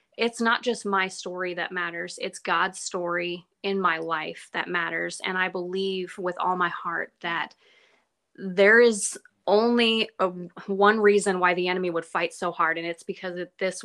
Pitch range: 175-200 Hz